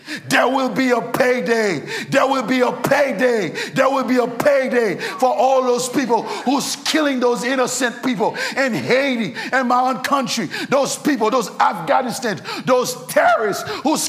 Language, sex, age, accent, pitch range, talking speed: English, male, 50-69, American, 165-240 Hz, 160 wpm